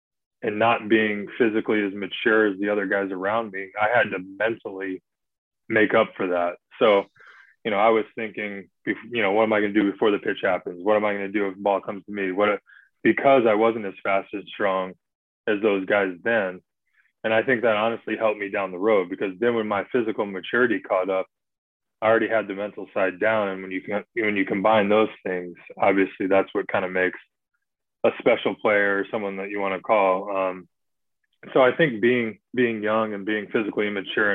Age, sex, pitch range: 20-39, male, 95-110 Hz